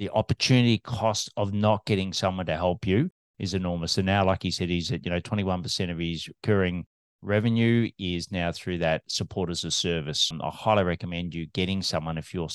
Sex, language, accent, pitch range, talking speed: male, English, Australian, 90-115 Hz, 200 wpm